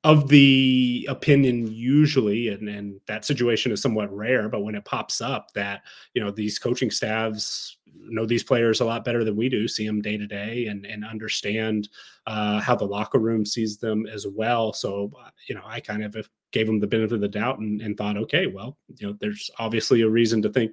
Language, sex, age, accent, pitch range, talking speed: English, male, 30-49, American, 105-125 Hz, 215 wpm